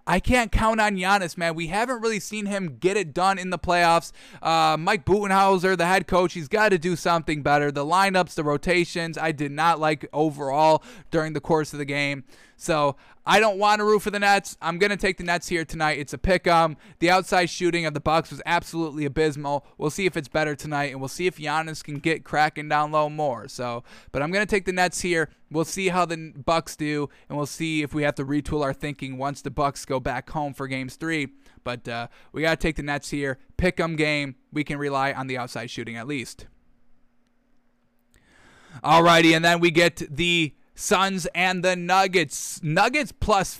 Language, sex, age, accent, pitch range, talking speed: English, male, 10-29, American, 145-190 Hz, 215 wpm